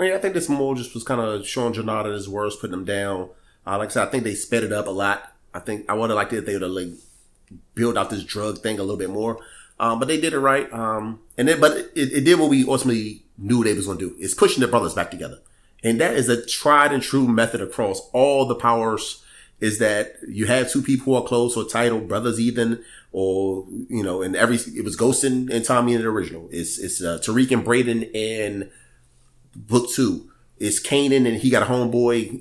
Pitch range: 105-130 Hz